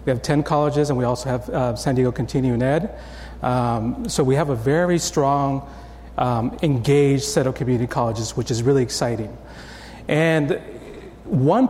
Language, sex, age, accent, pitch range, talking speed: English, male, 40-59, American, 125-160 Hz, 165 wpm